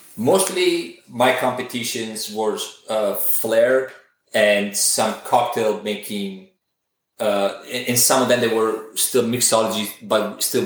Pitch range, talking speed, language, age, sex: 105-140 Hz, 130 wpm, English, 30-49, male